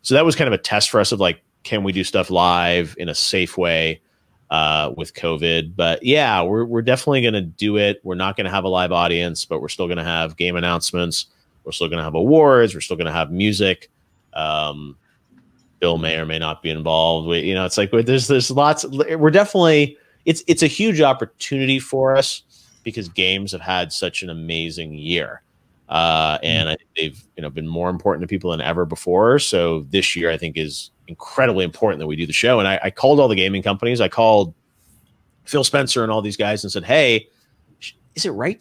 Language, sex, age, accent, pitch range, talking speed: English, male, 30-49, American, 85-115 Hz, 225 wpm